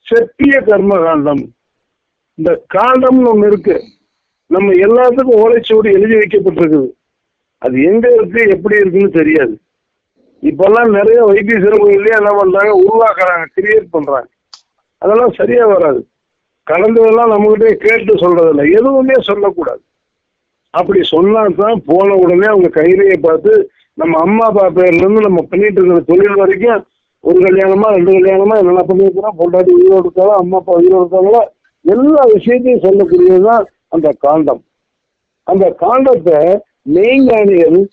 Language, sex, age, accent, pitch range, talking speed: Tamil, male, 50-69, native, 180-240 Hz, 110 wpm